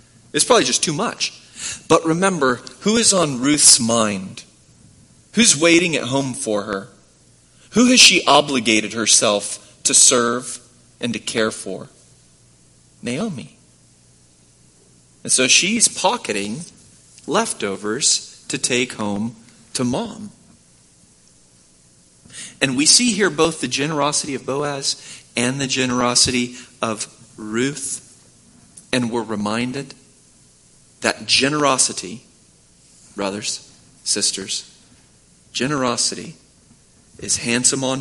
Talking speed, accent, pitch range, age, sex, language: 105 wpm, American, 100-145 Hz, 40-59, male, English